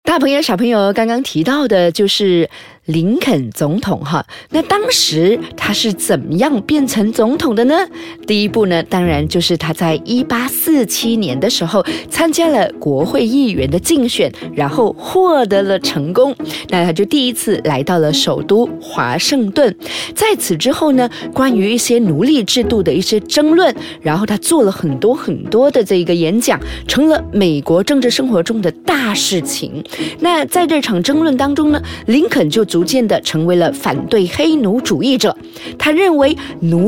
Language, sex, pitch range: Chinese, female, 180-285 Hz